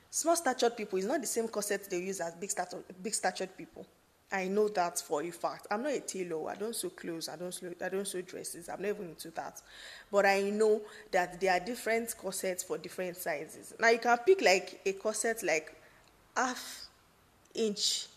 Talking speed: 205 wpm